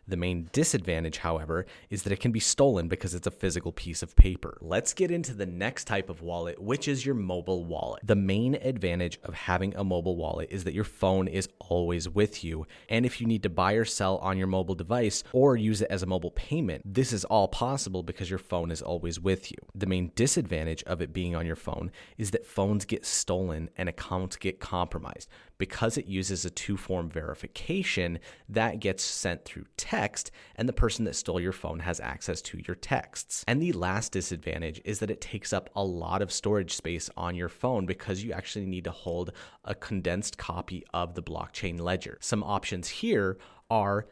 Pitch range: 90-110 Hz